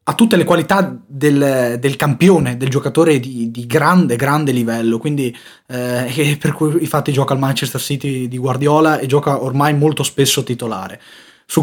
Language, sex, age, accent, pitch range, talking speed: Italian, male, 20-39, native, 125-155 Hz, 165 wpm